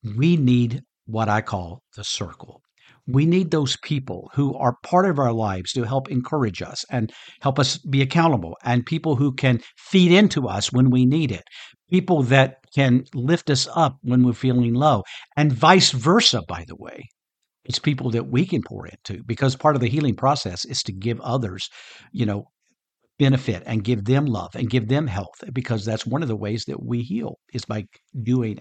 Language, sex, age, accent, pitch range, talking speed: English, male, 50-69, American, 115-165 Hz, 195 wpm